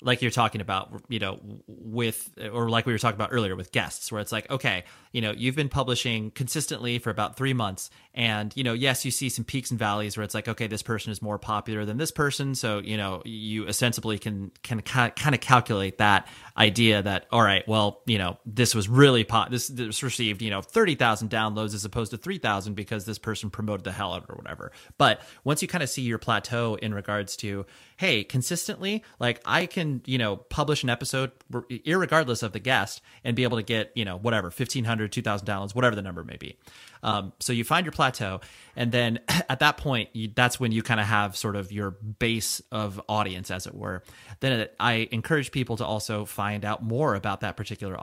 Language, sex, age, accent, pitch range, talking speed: English, male, 30-49, American, 105-125 Hz, 220 wpm